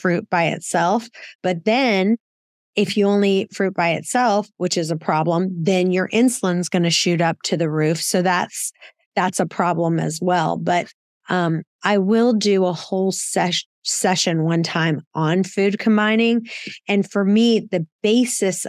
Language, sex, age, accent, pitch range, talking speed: English, female, 30-49, American, 175-205 Hz, 165 wpm